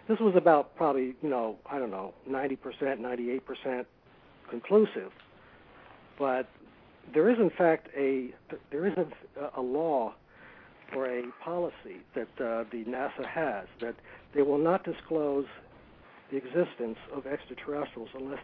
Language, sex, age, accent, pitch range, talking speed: English, male, 60-79, American, 130-175 Hz, 140 wpm